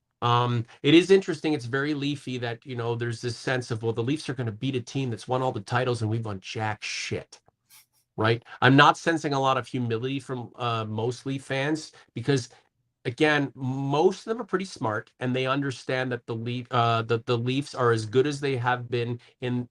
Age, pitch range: 30-49, 115-135 Hz